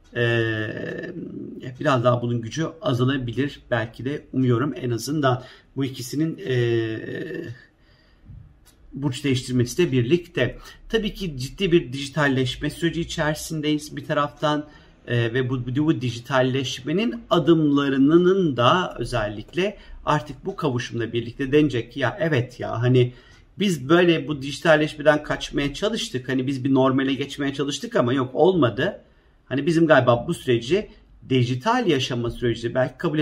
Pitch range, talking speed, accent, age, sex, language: 125-155 Hz, 125 wpm, native, 50-69, male, Turkish